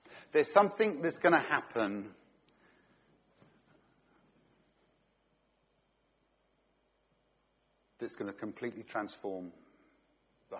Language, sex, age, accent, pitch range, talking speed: English, male, 50-69, British, 110-150 Hz, 70 wpm